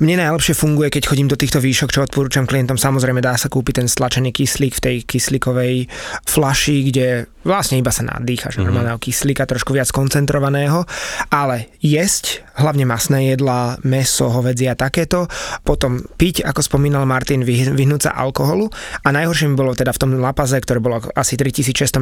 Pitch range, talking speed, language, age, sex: 130-145 Hz, 165 wpm, Slovak, 20-39, male